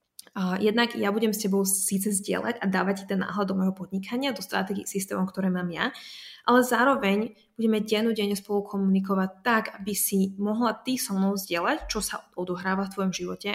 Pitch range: 195-220 Hz